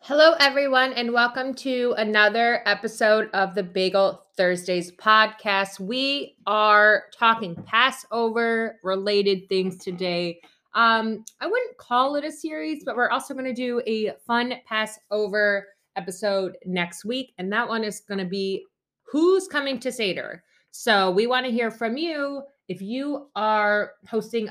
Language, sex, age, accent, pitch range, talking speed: English, female, 20-39, American, 190-250 Hz, 145 wpm